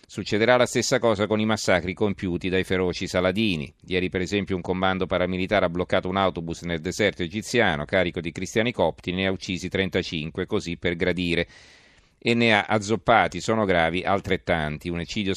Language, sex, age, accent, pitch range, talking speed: Italian, male, 40-59, native, 90-110 Hz, 170 wpm